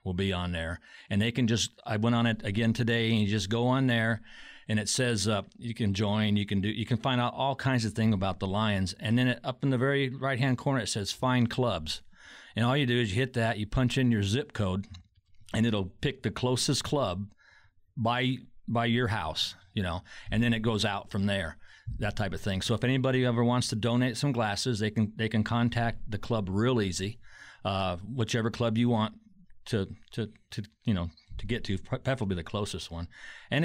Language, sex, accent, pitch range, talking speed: English, male, American, 100-125 Hz, 230 wpm